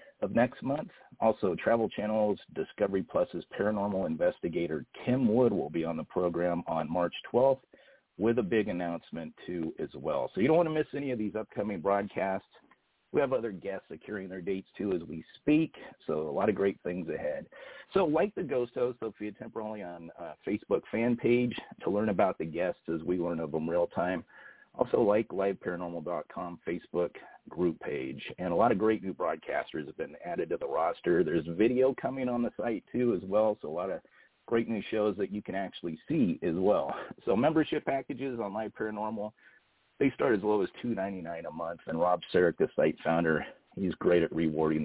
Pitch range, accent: 85-115 Hz, American